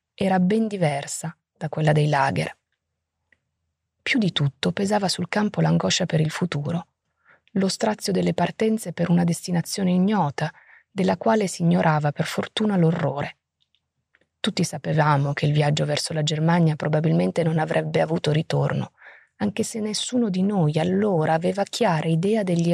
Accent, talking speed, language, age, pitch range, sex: native, 145 wpm, Italian, 30-49, 155-190 Hz, female